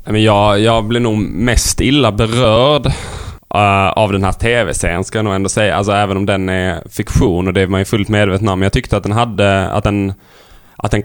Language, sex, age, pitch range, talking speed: Swedish, male, 10-29, 95-110 Hz, 225 wpm